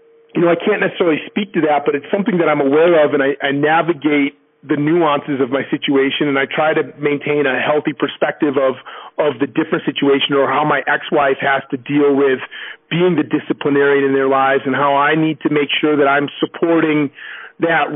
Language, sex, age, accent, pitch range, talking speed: English, male, 40-59, American, 140-160 Hz, 210 wpm